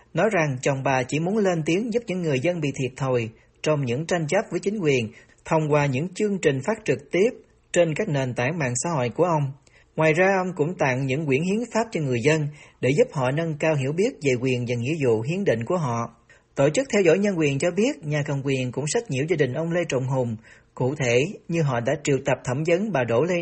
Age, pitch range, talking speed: 40-59, 130-175 Hz, 255 wpm